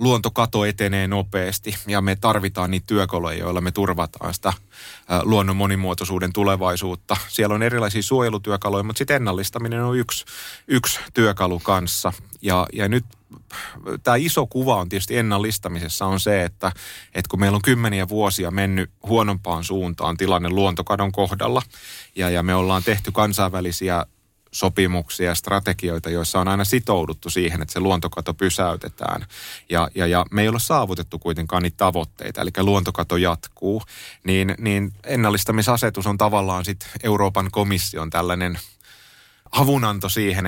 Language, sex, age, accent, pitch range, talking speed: Finnish, male, 30-49, native, 90-105 Hz, 135 wpm